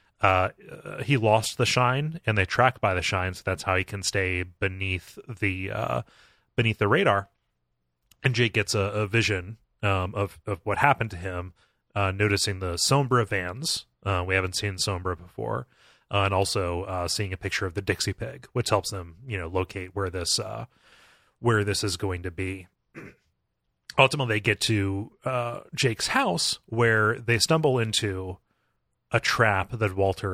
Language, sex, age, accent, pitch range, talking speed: English, male, 30-49, American, 95-115 Hz, 175 wpm